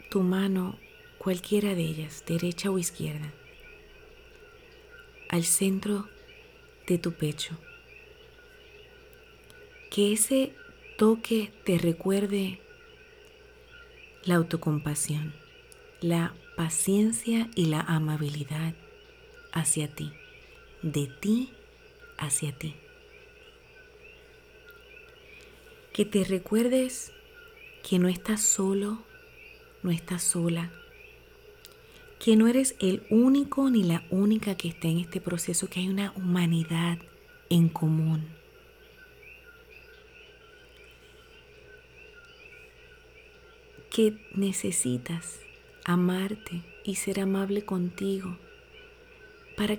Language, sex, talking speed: Spanish, female, 80 wpm